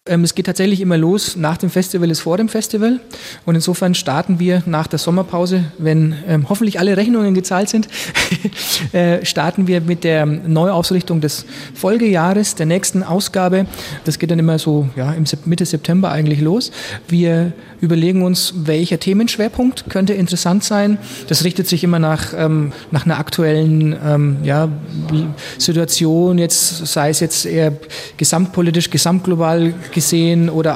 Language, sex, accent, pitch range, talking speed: German, male, German, 160-185 Hz, 155 wpm